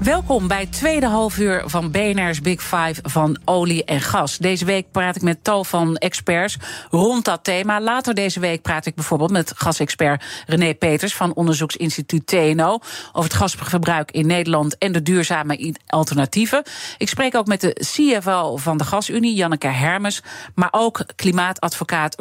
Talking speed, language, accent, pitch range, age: 160 wpm, Dutch, Dutch, 155-205 Hz, 40-59